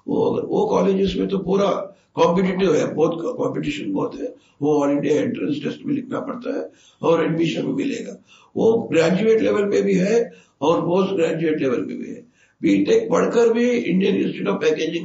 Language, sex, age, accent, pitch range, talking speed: Hindi, male, 60-79, native, 165-255 Hz, 175 wpm